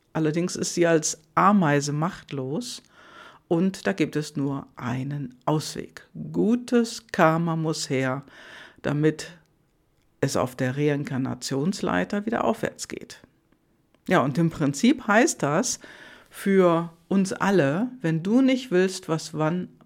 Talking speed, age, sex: 120 wpm, 60-79, female